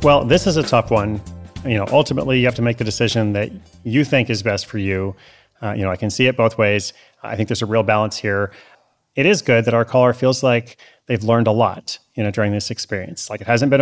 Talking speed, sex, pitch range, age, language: 255 wpm, male, 110-130 Hz, 30-49, English